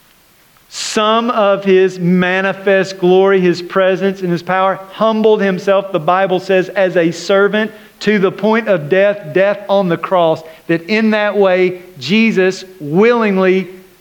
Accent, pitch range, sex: American, 155-190 Hz, male